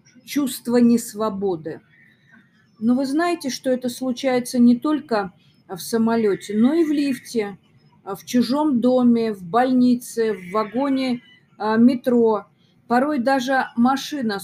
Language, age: Russian, 30-49